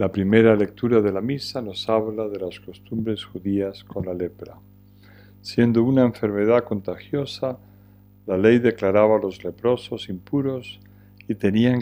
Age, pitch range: 40-59, 100-115 Hz